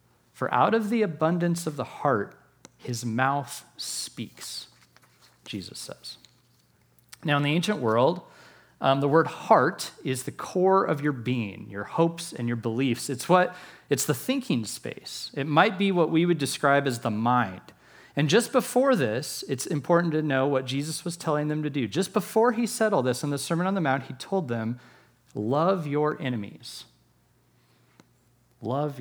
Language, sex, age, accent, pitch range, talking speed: English, male, 40-59, American, 130-175 Hz, 170 wpm